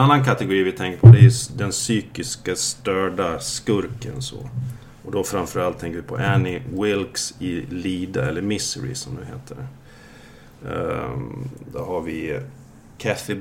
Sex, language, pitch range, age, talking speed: male, Swedish, 95-125 Hz, 30-49, 140 wpm